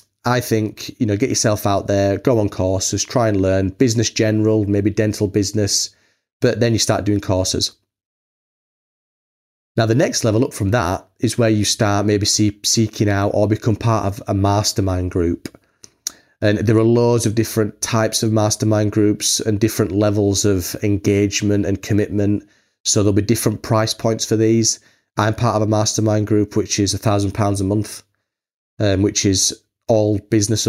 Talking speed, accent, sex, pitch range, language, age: 175 wpm, British, male, 100-110 Hz, English, 30-49